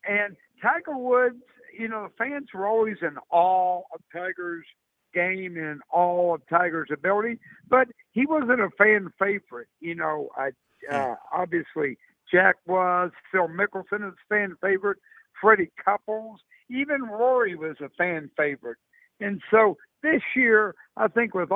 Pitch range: 175-235 Hz